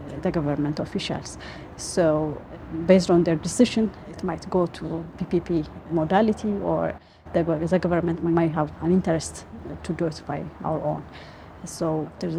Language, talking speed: English, 140 wpm